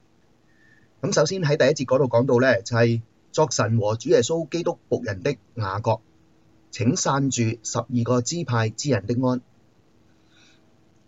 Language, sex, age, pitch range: Chinese, male, 30-49, 110-130 Hz